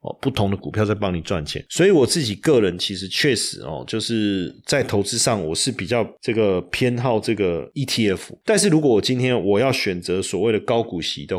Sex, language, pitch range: male, Chinese, 105-130 Hz